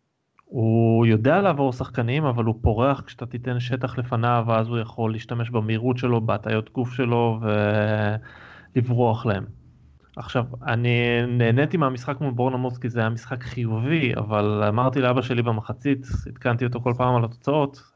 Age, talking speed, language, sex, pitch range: 30-49, 145 wpm, Hebrew, male, 115-140 Hz